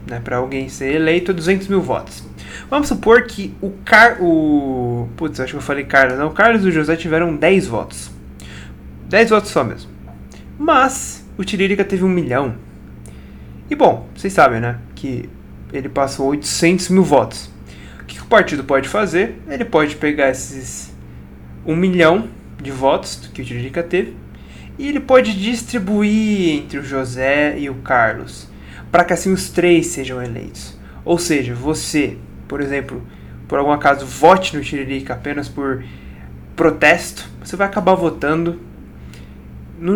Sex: male